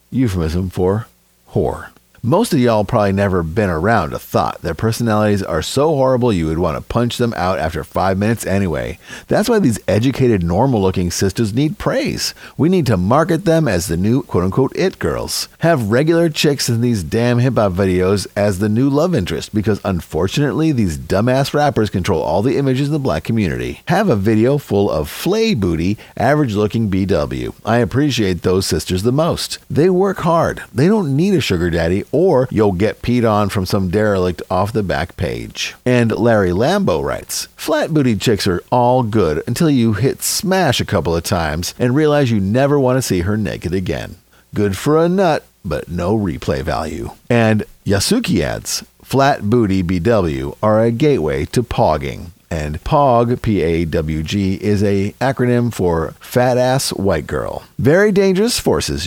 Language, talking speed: English, 175 wpm